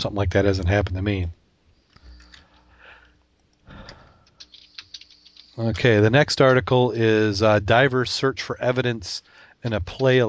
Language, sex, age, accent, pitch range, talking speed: English, male, 40-59, American, 95-115 Hz, 115 wpm